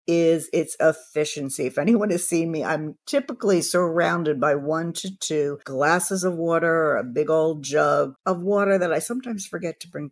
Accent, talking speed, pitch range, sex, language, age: American, 185 wpm, 150-200 Hz, female, English, 50-69